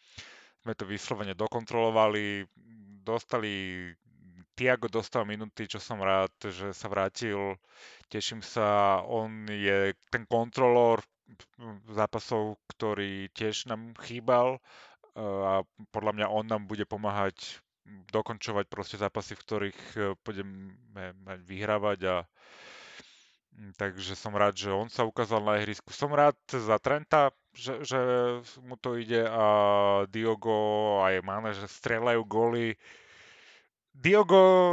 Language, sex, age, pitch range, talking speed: Slovak, male, 30-49, 105-130 Hz, 115 wpm